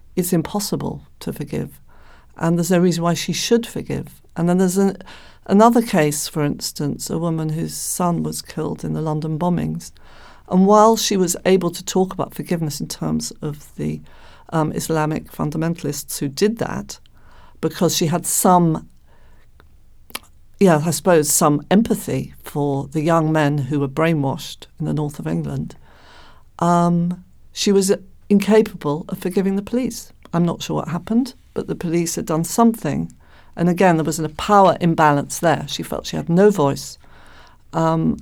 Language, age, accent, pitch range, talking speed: English, 50-69, British, 150-190 Hz, 160 wpm